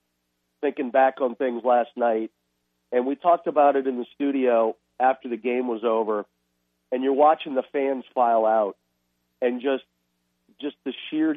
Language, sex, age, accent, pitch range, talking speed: English, male, 40-59, American, 100-150 Hz, 165 wpm